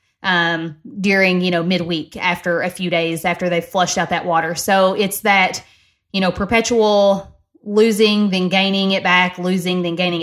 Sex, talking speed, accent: female, 175 wpm, American